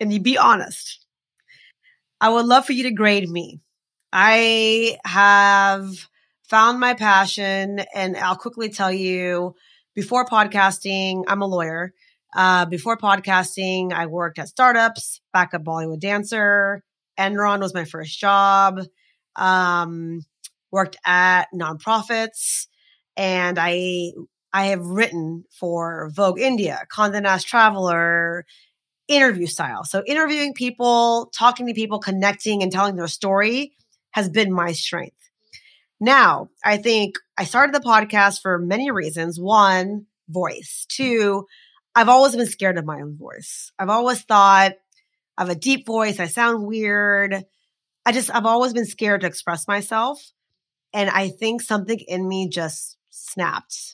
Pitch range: 180-225 Hz